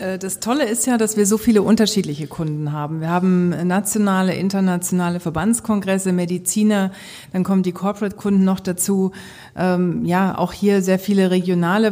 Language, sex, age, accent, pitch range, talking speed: German, female, 40-59, German, 185-210 Hz, 150 wpm